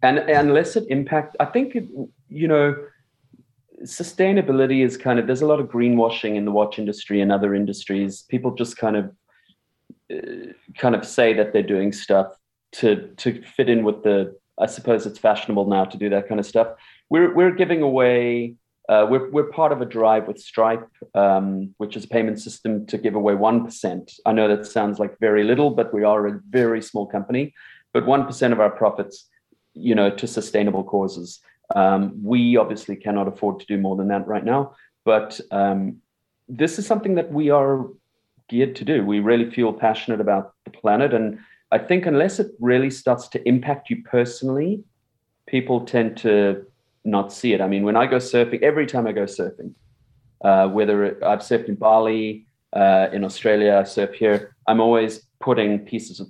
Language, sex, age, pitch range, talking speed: English, male, 30-49, 105-130 Hz, 190 wpm